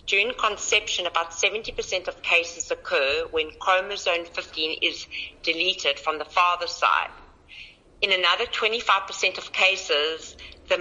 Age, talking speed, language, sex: 50-69, 120 wpm, English, female